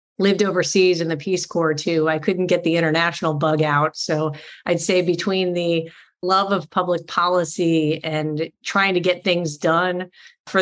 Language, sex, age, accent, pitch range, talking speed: English, female, 30-49, American, 160-185 Hz, 170 wpm